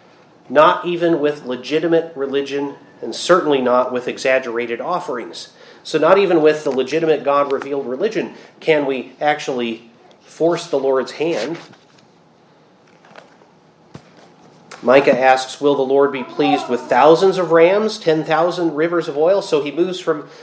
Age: 30-49